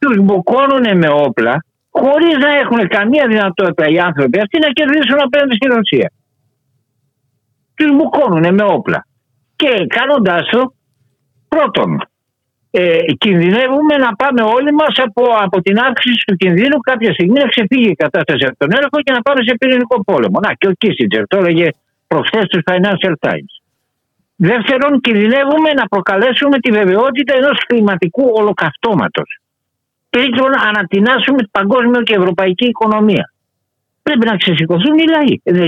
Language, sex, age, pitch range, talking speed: Greek, male, 60-79, 155-260 Hz, 145 wpm